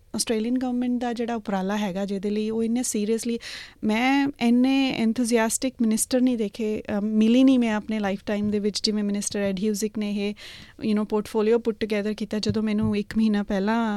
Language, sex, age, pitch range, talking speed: Punjabi, female, 30-49, 210-245 Hz, 175 wpm